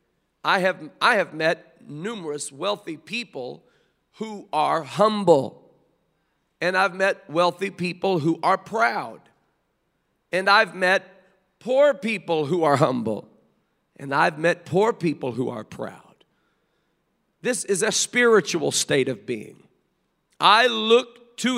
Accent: American